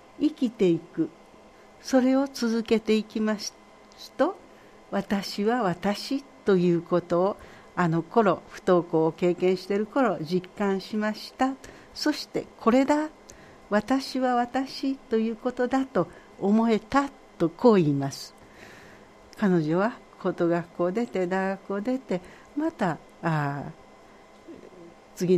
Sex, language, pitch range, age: female, Japanese, 175-240 Hz, 60-79